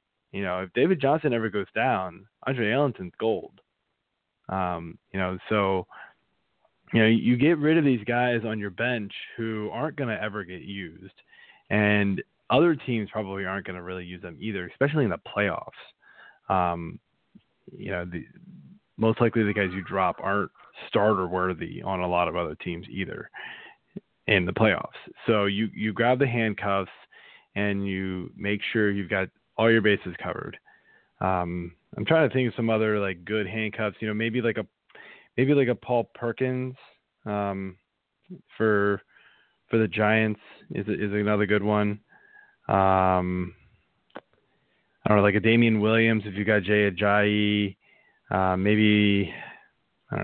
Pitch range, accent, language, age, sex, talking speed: 95-115 Hz, American, English, 20-39, male, 160 wpm